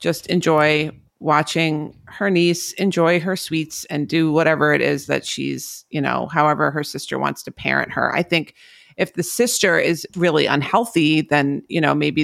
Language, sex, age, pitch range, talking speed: English, female, 40-59, 145-175 Hz, 175 wpm